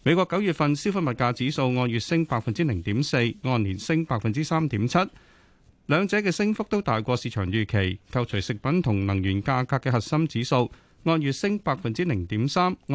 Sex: male